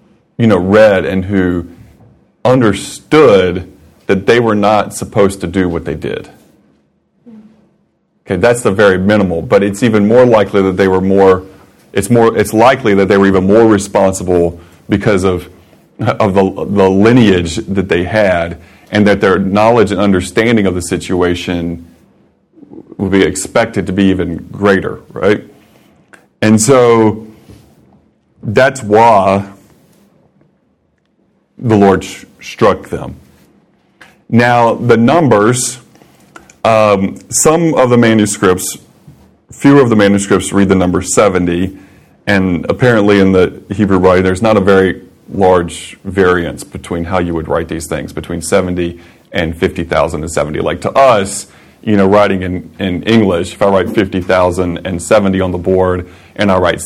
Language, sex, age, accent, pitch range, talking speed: English, male, 30-49, American, 90-105 Hz, 145 wpm